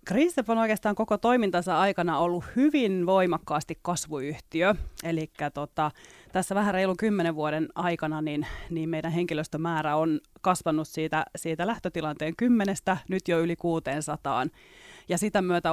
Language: Finnish